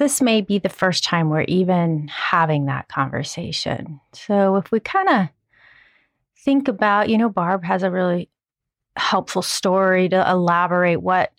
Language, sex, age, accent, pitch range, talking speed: English, female, 30-49, American, 170-225 Hz, 155 wpm